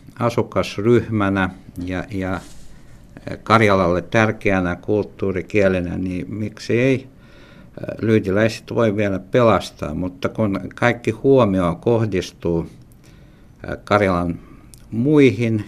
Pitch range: 90-110 Hz